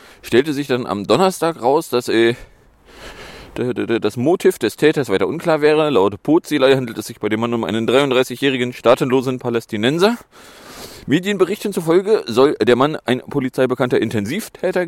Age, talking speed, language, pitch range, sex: 30-49, 145 wpm, German, 115-150 Hz, male